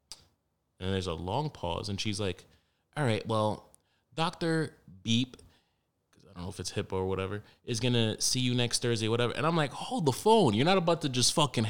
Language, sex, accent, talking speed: English, male, American, 215 wpm